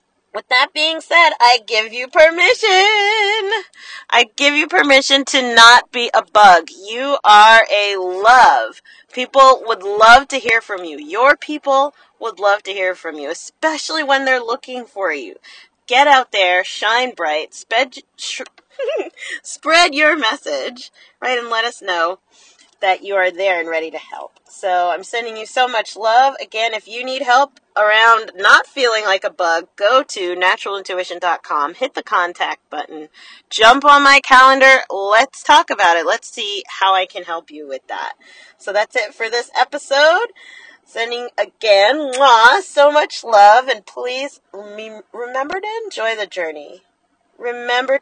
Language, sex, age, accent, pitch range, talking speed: English, female, 30-49, American, 200-280 Hz, 155 wpm